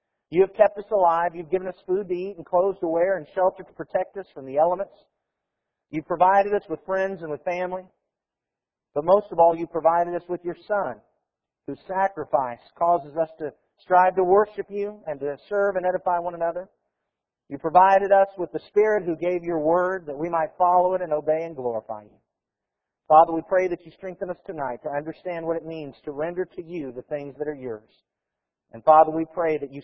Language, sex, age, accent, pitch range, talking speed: English, male, 50-69, American, 150-185 Hz, 210 wpm